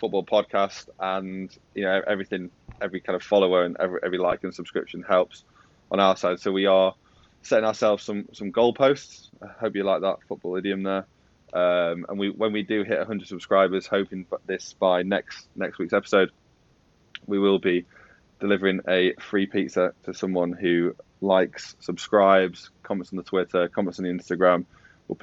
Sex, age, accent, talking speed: male, 20-39, British, 180 wpm